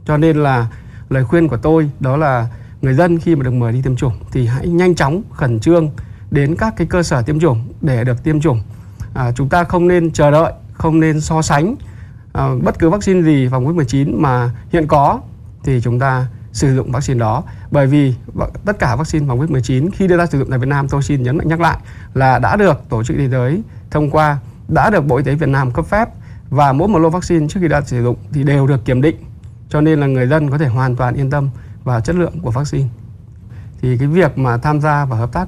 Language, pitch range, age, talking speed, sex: Vietnamese, 120-160 Hz, 20-39, 240 wpm, male